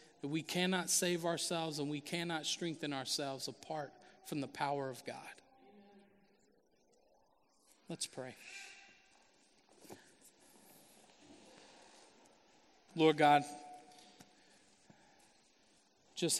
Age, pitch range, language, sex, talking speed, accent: 40-59, 150-190 Hz, English, male, 75 wpm, American